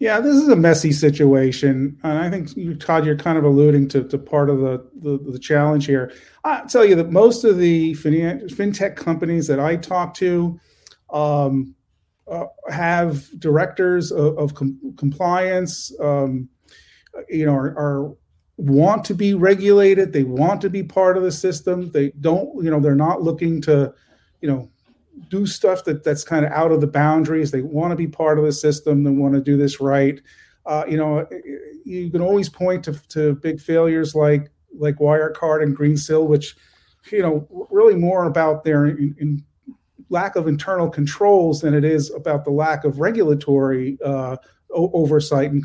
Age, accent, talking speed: 40-59, American, 180 wpm